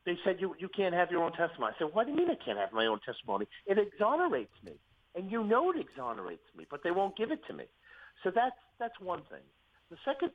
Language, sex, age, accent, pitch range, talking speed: English, male, 50-69, American, 150-250 Hz, 255 wpm